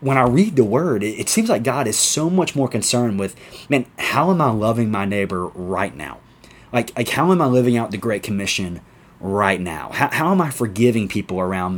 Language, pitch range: English, 95-125 Hz